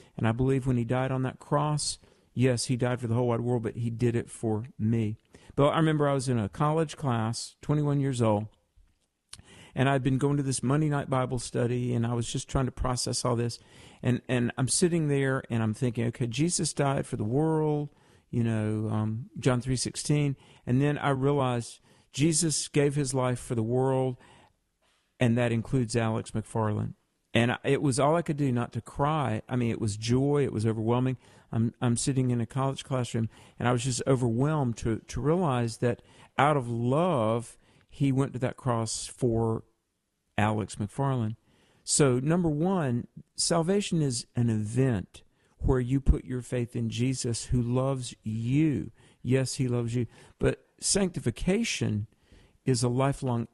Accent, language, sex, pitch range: American, English, male, 115-140 Hz